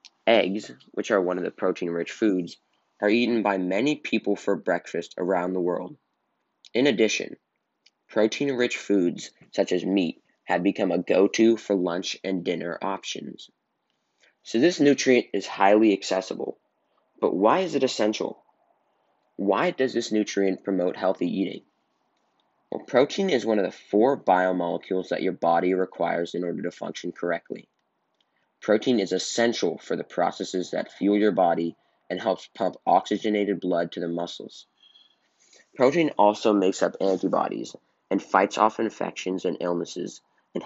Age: 20-39